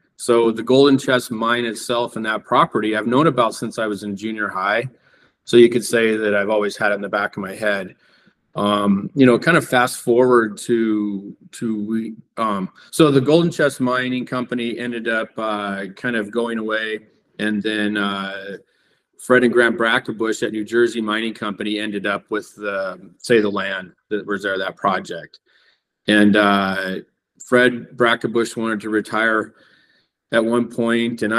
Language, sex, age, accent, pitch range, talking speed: English, male, 40-59, American, 105-120 Hz, 175 wpm